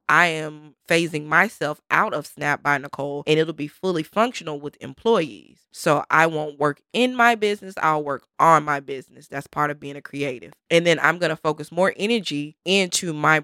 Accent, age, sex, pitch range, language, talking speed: American, 20-39, female, 150-195 Hz, English, 195 wpm